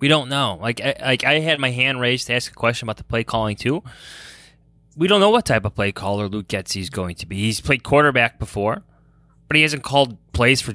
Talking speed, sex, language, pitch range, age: 245 wpm, male, English, 105-135 Hz, 20-39